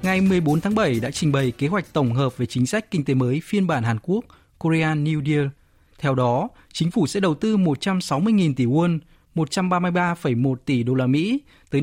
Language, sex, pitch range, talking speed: Vietnamese, male, 130-175 Hz, 205 wpm